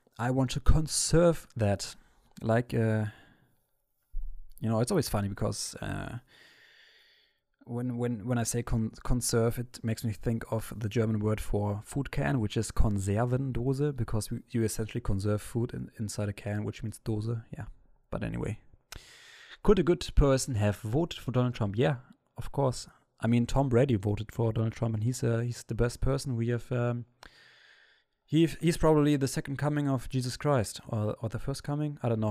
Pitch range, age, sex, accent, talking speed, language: 110-135 Hz, 20-39, male, German, 180 wpm, English